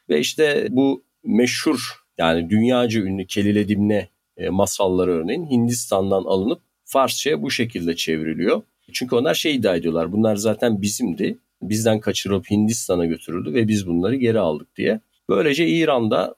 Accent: native